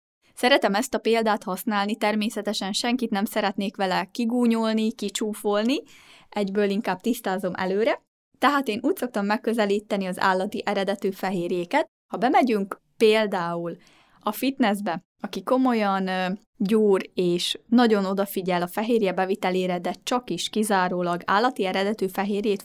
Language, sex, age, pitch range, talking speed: Hungarian, female, 20-39, 195-230 Hz, 120 wpm